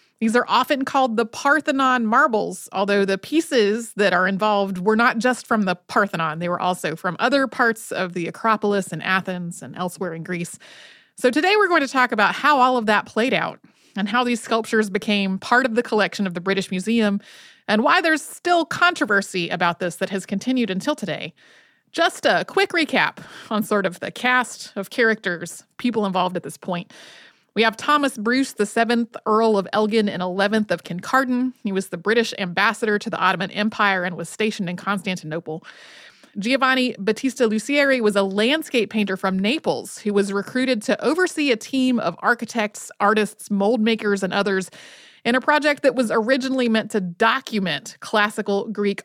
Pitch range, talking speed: 195-250 Hz, 185 wpm